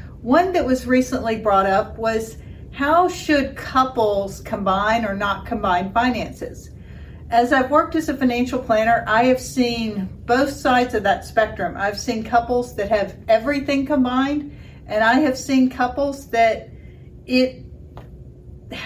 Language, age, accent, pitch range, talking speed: English, 50-69, American, 225-270 Hz, 140 wpm